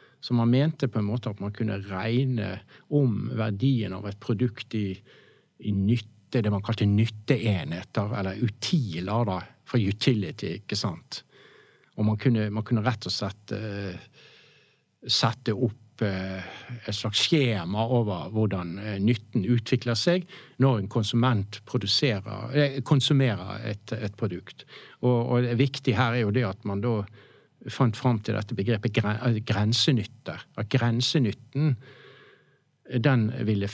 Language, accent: English, Norwegian